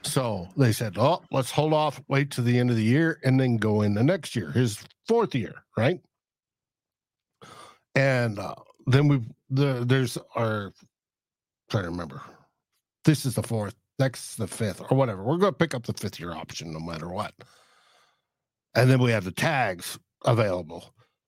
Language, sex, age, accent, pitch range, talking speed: English, male, 60-79, American, 120-155 Hz, 180 wpm